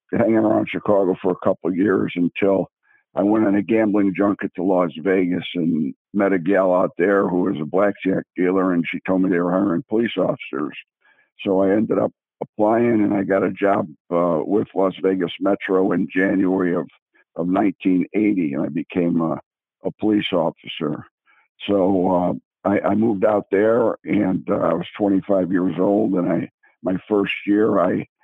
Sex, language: male, English